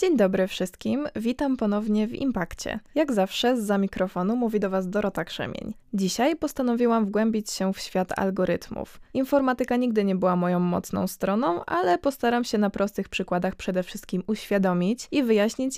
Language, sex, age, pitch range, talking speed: Polish, female, 20-39, 185-225 Hz, 160 wpm